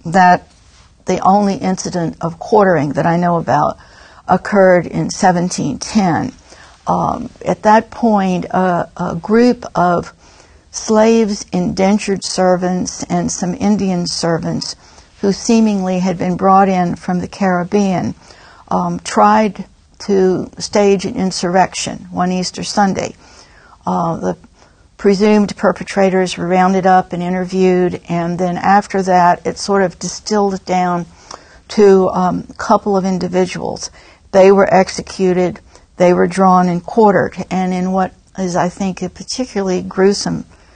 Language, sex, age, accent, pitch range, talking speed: English, female, 60-79, American, 180-200 Hz, 130 wpm